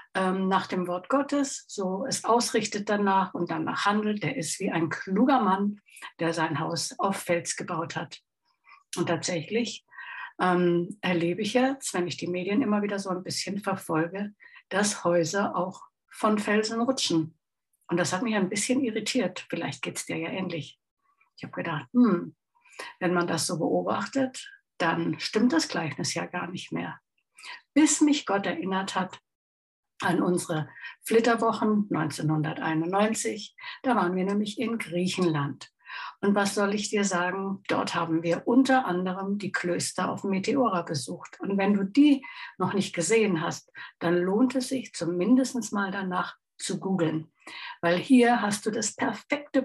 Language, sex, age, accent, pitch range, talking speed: German, female, 60-79, German, 175-235 Hz, 160 wpm